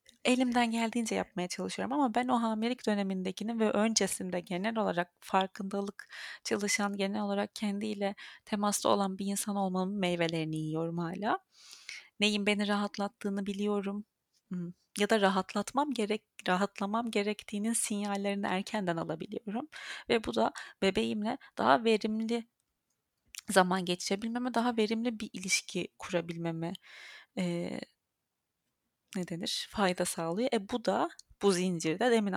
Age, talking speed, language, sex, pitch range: 30-49, 115 wpm, Turkish, female, 195-230 Hz